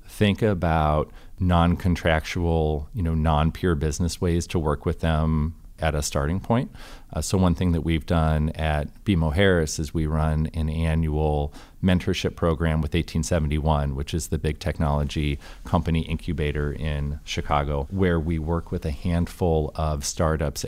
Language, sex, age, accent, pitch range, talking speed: English, male, 40-59, American, 75-85 Hz, 150 wpm